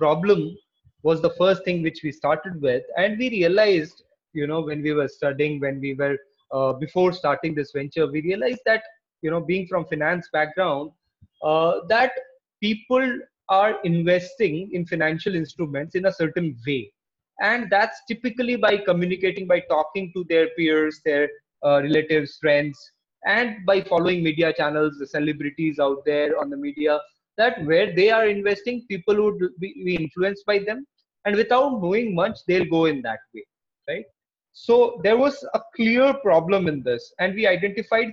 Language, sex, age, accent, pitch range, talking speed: English, male, 20-39, Indian, 155-215 Hz, 165 wpm